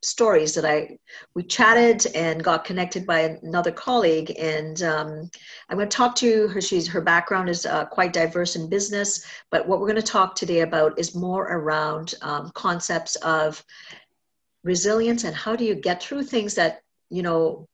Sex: female